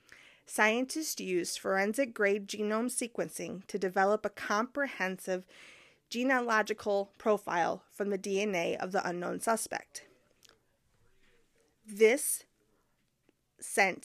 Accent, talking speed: American, 85 wpm